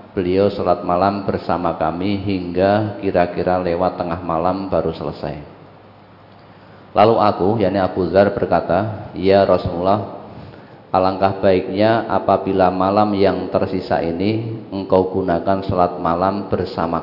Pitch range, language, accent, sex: 90-105 Hz, Indonesian, native, male